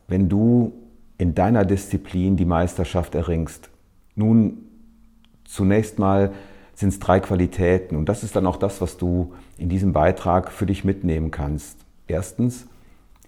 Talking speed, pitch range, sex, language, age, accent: 140 wpm, 90-105 Hz, male, German, 40-59, German